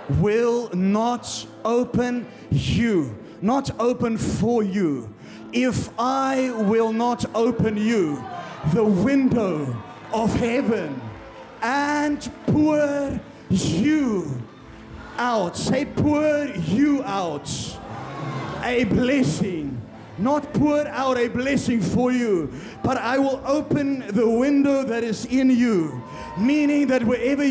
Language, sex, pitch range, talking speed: English, male, 205-260 Hz, 105 wpm